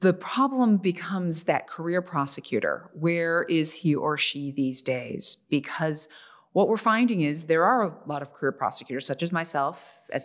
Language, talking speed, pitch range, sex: English, 170 wpm, 150-195 Hz, female